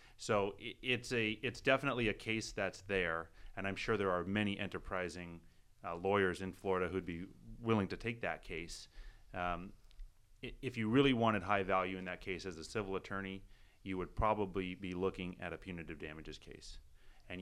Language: English